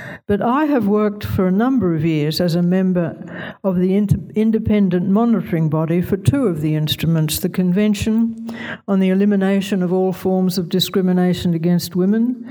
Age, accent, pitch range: 60-79, Australian, 170-210 Hz